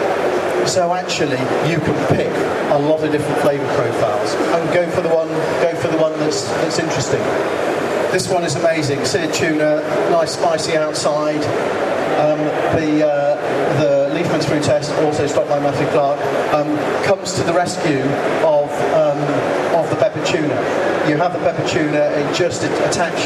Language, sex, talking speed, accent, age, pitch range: English, male, 165 wpm, British, 40-59, 145-175 Hz